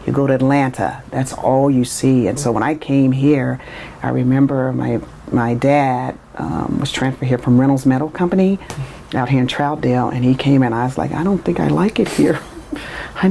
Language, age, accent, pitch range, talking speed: English, 40-59, American, 130-165 Hz, 205 wpm